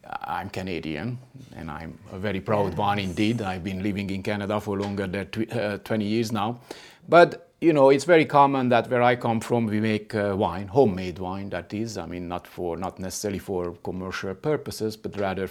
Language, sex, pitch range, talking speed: English, male, 90-110 Hz, 195 wpm